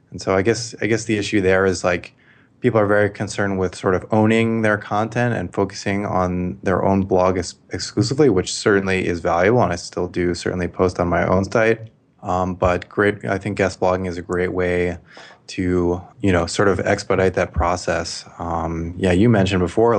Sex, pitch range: male, 90-105 Hz